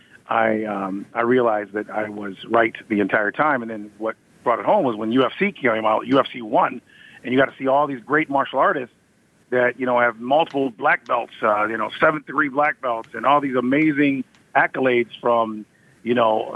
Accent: American